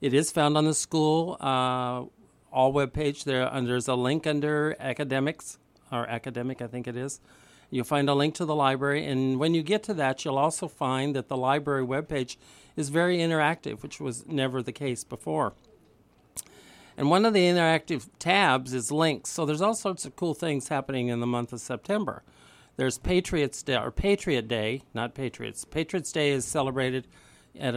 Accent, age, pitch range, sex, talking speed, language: American, 50-69, 125-155 Hz, male, 190 wpm, English